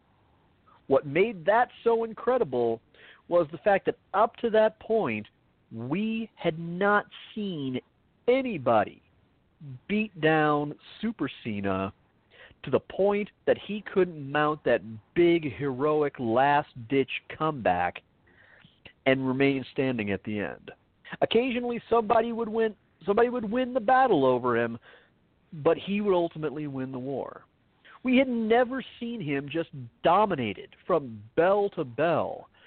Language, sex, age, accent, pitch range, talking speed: English, male, 40-59, American, 135-215 Hz, 125 wpm